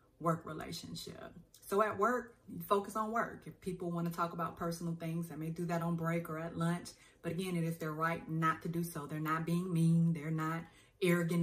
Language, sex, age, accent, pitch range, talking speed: English, female, 30-49, American, 160-180 Hz, 220 wpm